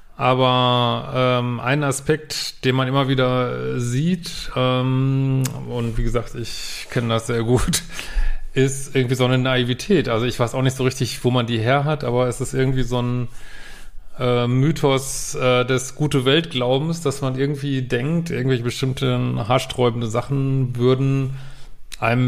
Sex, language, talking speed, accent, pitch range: male, German, 155 wpm, German, 120-135 Hz